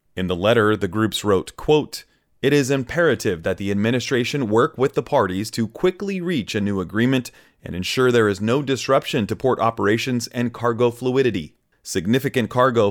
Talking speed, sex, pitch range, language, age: 170 wpm, male, 110-135 Hz, English, 30-49